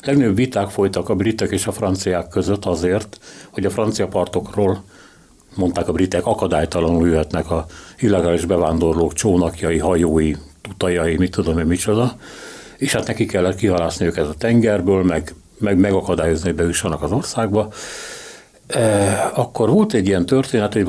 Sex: male